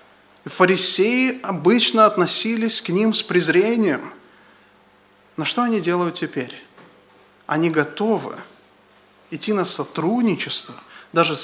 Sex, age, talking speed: male, 30-49, 95 wpm